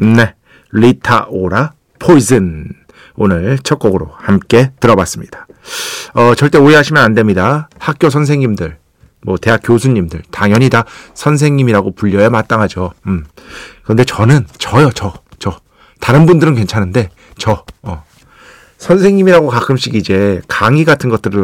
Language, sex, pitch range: Korean, male, 100-140 Hz